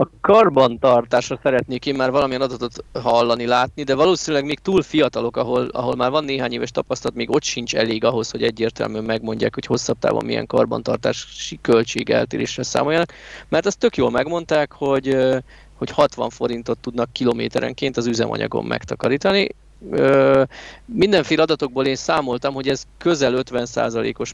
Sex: male